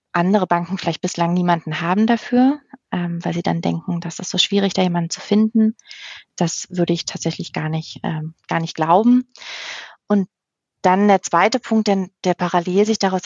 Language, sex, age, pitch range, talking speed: German, female, 30-49, 175-200 Hz, 170 wpm